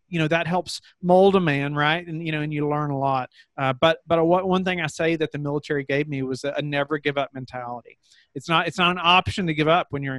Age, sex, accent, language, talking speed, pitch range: 30-49, male, American, English, 275 wpm, 135-160 Hz